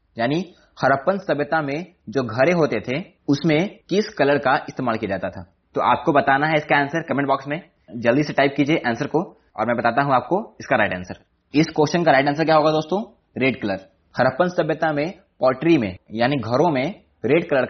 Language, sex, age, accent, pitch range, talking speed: Hindi, male, 20-39, native, 120-160 Hz, 135 wpm